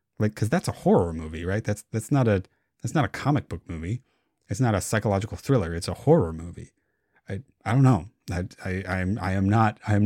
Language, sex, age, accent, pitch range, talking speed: English, male, 30-49, American, 95-120 Hz, 235 wpm